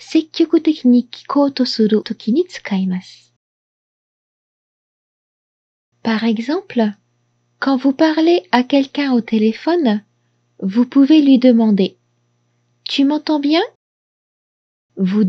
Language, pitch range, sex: Japanese, 220-295 Hz, female